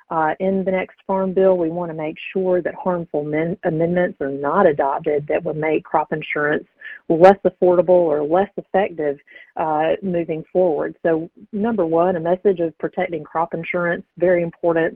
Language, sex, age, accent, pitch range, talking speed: English, female, 40-59, American, 160-185 Hz, 165 wpm